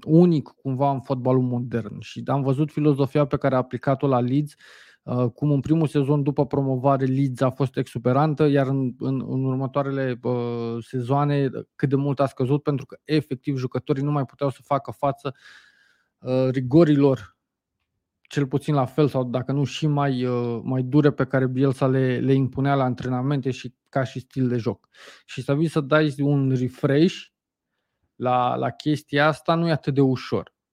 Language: Romanian